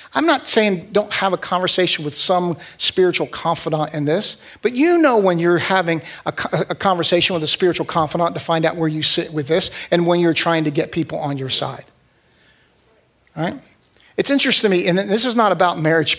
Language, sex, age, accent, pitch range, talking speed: English, male, 50-69, American, 155-195 Hz, 210 wpm